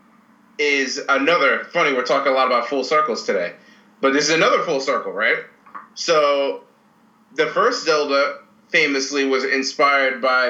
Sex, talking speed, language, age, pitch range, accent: male, 150 wpm, English, 30-49, 130-165 Hz, American